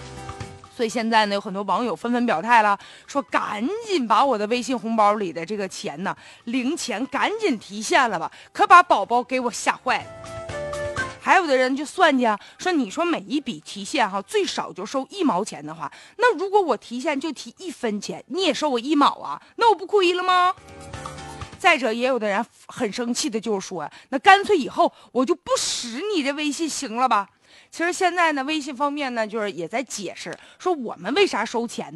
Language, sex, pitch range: Chinese, female, 215-305 Hz